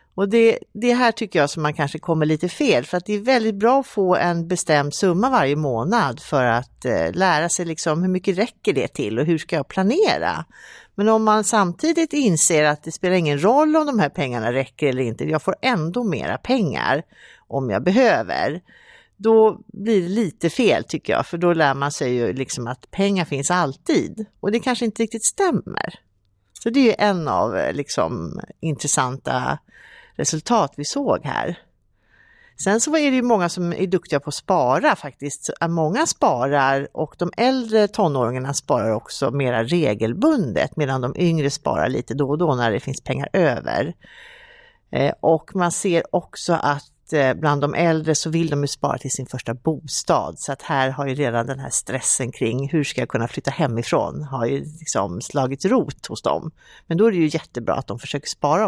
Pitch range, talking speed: 140-195 Hz, 190 wpm